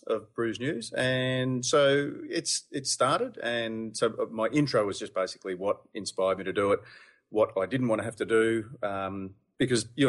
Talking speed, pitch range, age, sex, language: 190 wpm, 100-125 Hz, 30-49, male, English